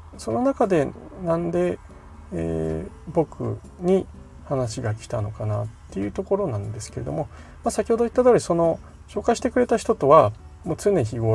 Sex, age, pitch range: male, 40-59, 105-135 Hz